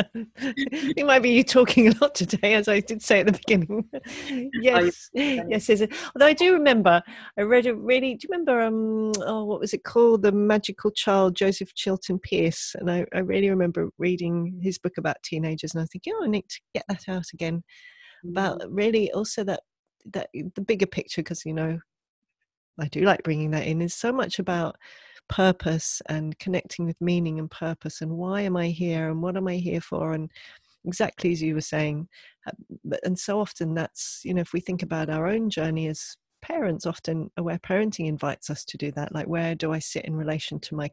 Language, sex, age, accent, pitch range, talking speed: English, female, 40-59, British, 160-215 Hz, 205 wpm